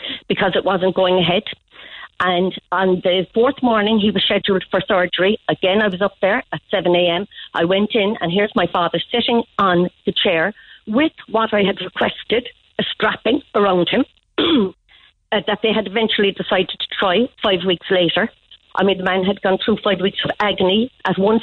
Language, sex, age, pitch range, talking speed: English, female, 50-69, 180-220 Hz, 180 wpm